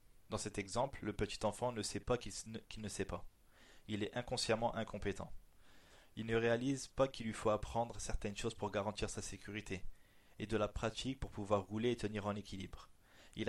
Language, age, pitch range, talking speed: French, 20-39, 100-115 Hz, 190 wpm